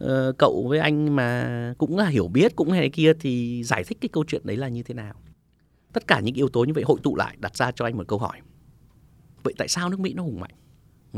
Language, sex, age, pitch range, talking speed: Vietnamese, male, 20-39, 110-160 Hz, 265 wpm